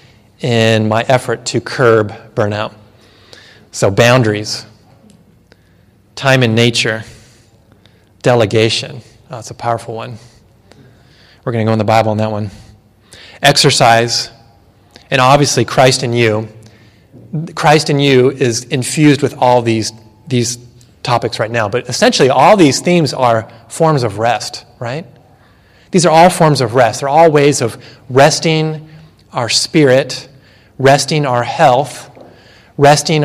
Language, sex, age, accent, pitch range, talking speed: English, male, 30-49, American, 110-130 Hz, 130 wpm